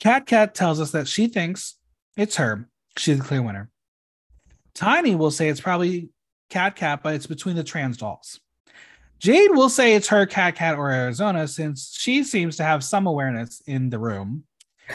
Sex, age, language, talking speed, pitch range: male, 30-49, English, 180 wpm, 135-225 Hz